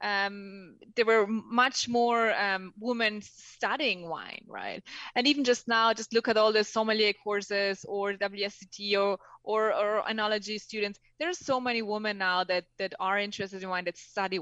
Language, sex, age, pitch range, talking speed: English, female, 20-39, 195-245 Hz, 175 wpm